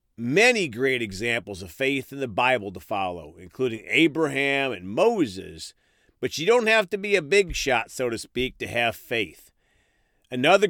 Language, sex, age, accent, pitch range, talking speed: English, male, 40-59, American, 115-175 Hz, 170 wpm